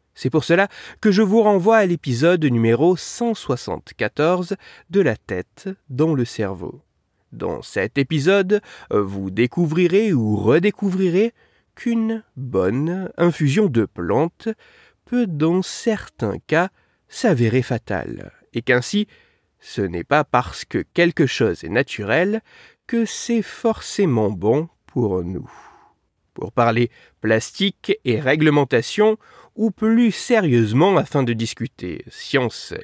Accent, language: French, French